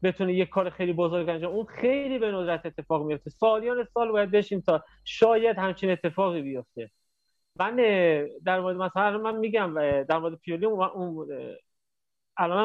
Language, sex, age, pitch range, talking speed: Persian, male, 30-49, 170-205 Hz, 155 wpm